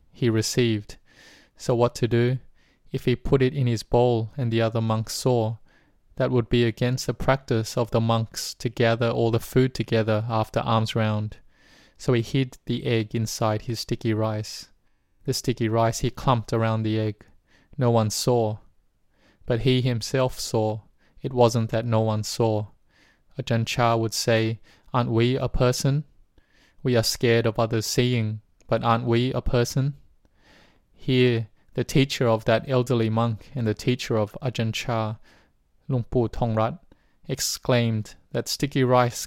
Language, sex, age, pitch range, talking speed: English, male, 20-39, 110-125 Hz, 155 wpm